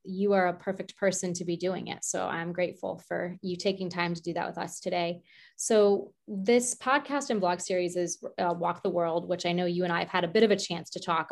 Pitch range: 180-210 Hz